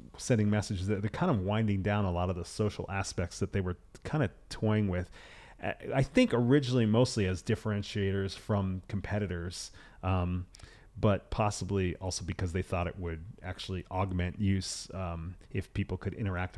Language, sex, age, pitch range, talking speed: English, male, 30-49, 90-110 Hz, 165 wpm